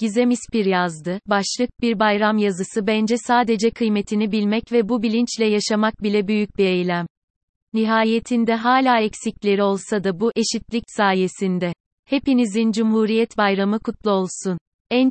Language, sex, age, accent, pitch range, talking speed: Turkish, female, 30-49, native, 195-225 Hz, 130 wpm